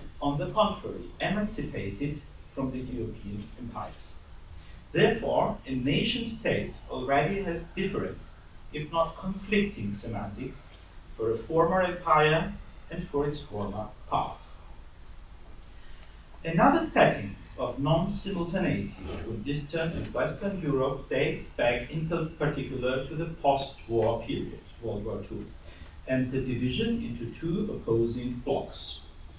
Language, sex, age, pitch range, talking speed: German, male, 50-69, 100-150 Hz, 110 wpm